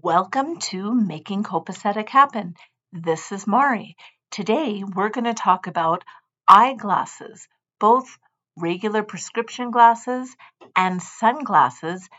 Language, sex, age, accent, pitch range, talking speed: English, female, 50-69, American, 175-225 Hz, 105 wpm